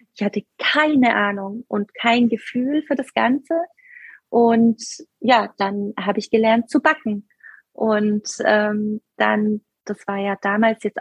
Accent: German